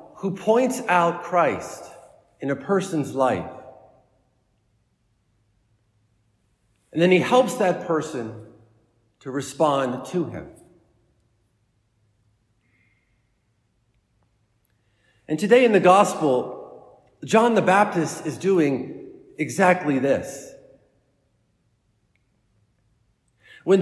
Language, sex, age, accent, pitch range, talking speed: English, male, 50-69, American, 110-185 Hz, 80 wpm